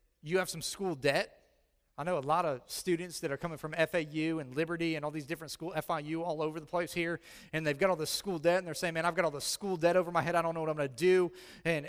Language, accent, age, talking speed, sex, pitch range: English, American, 30-49, 295 wpm, male, 135-195 Hz